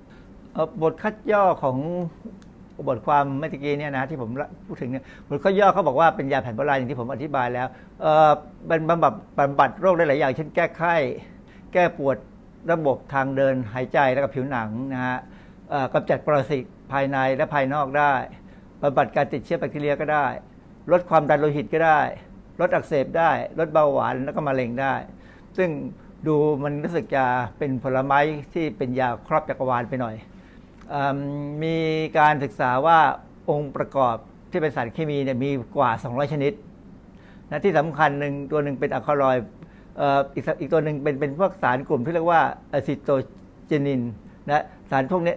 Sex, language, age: male, Thai, 60-79